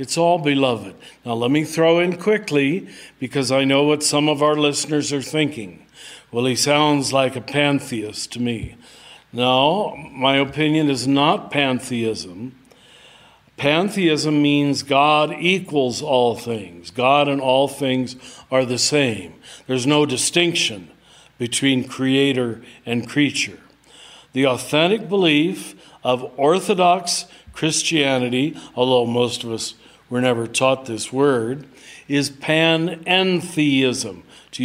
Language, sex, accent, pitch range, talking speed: English, male, American, 125-165 Hz, 125 wpm